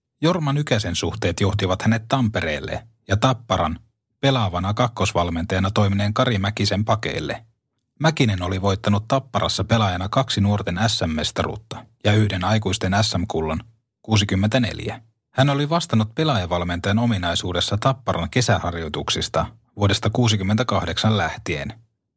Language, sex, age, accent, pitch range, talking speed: Finnish, male, 30-49, native, 95-120 Hz, 105 wpm